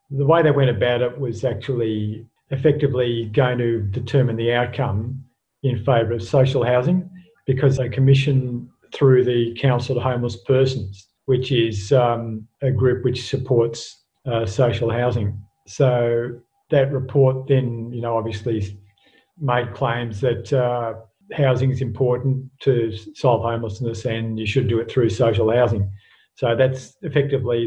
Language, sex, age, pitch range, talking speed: English, male, 50-69, 115-135 Hz, 145 wpm